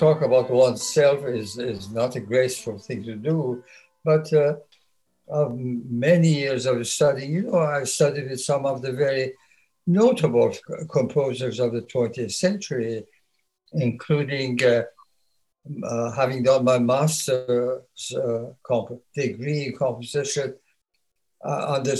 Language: English